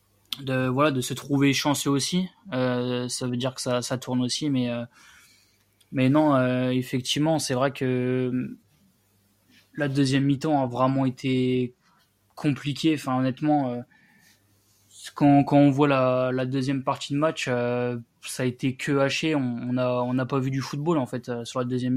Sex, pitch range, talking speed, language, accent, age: male, 125-145 Hz, 180 wpm, French, French, 20-39